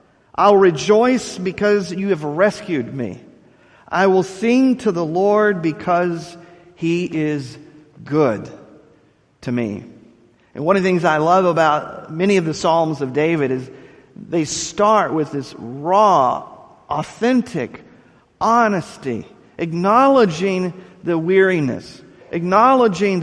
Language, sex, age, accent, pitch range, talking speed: English, male, 50-69, American, 150-200 Hz, 115 wpm